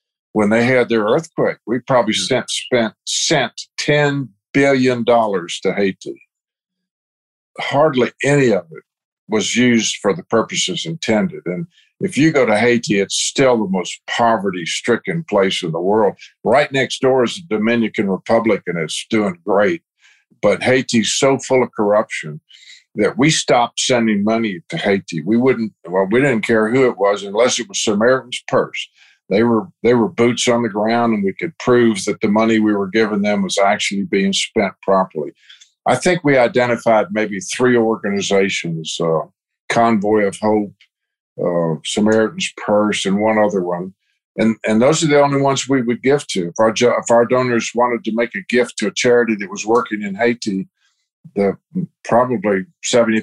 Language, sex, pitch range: English, male, 105-125 Hz